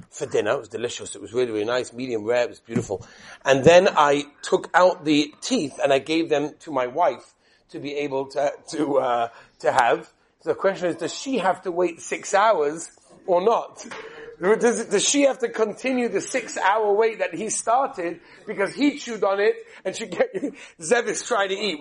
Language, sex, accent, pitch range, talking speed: English, male, British, 175-260 Hz, 205 wpm